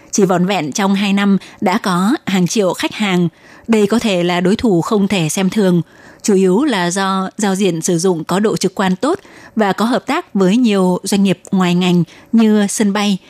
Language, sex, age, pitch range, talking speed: Vietnamese, female, 20-39, 180-210 Hz, 215 wpm